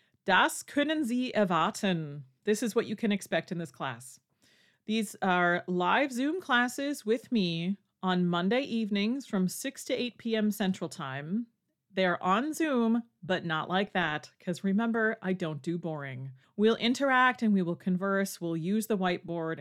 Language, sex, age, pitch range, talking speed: English, female, 30-49, 175-225 Hz, 160 wpm